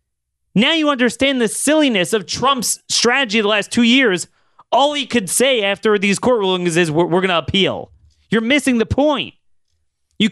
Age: 30-49